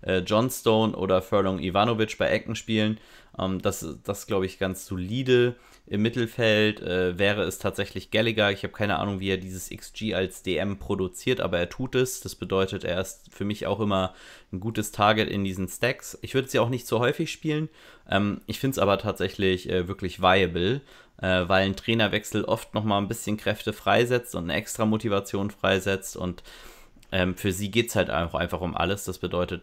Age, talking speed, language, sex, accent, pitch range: 30-49, 190 wpm, German, male, German, 90-105 Hz